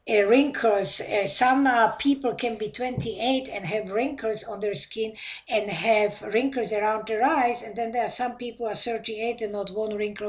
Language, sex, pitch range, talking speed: English, female, 205-260 Hz, 195 wpm